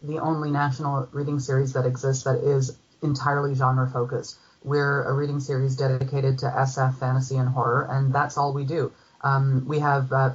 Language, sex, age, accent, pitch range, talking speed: English, female, 30-49, American, 130-145 Hz, 180 wpm